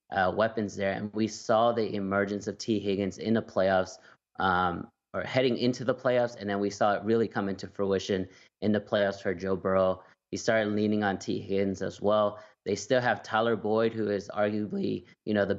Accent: American